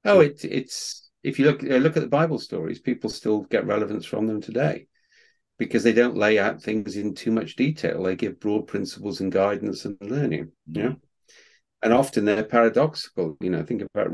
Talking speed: 185 wpm